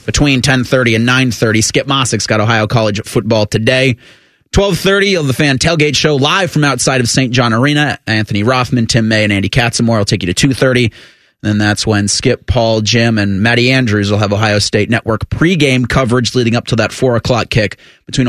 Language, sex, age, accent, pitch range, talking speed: English, male, 30-49, American, 105-130 Hz, 210 wpm